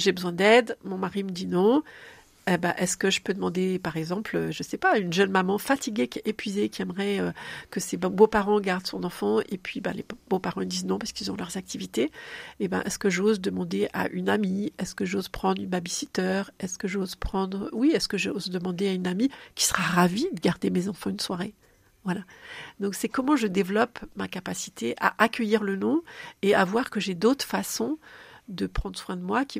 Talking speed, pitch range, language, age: 220 wpm, 190-230 Hz, French, 40-59